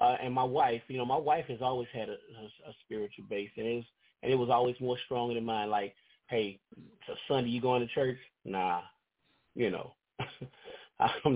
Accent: American